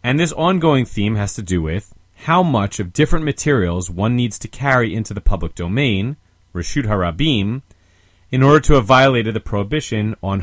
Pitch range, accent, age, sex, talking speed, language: 90-130 Hz, American, 30-49, male, 180 wpm, English